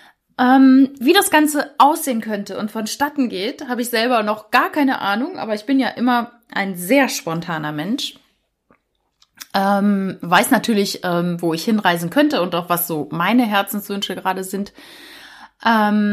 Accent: German